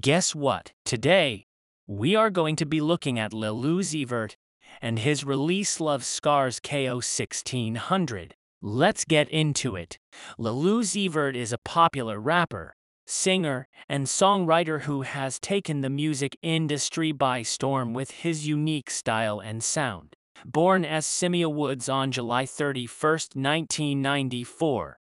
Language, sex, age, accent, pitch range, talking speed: English, male, 30-49, American, 130-160 Hz, 130 wpm